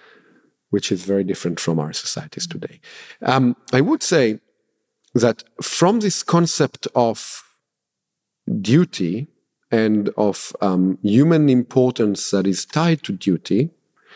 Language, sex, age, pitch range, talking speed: German, male, 50-69, 100-150 Hz, 120 wpm